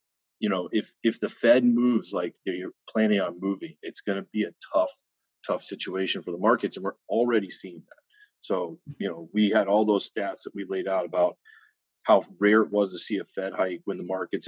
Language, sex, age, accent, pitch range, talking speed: English, male, 30-49, American, 100-120 Hz, 225 wpm